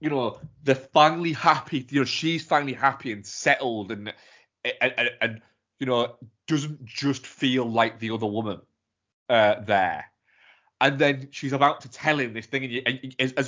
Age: 20-39